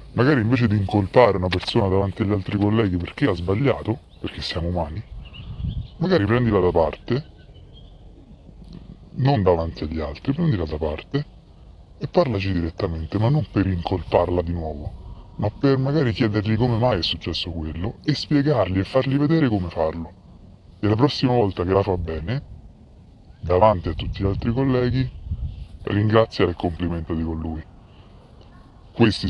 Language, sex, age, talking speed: Italian, female, 30-49, 145 wpm